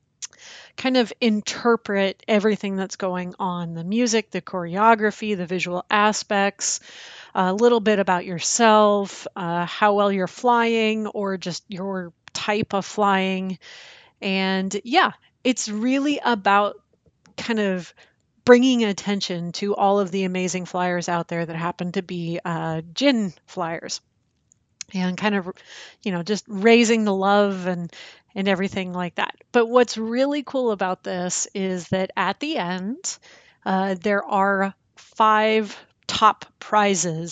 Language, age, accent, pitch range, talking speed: English, 30-49, American, 185-230 Hz, 135 wpm